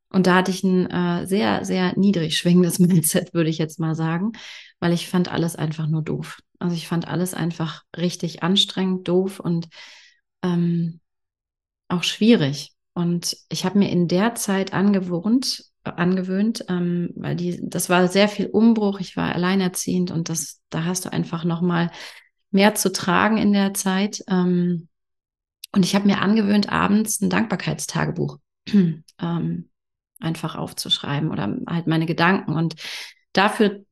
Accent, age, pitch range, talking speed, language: German, 30-49, 170-200 Hz, 155 wpm, German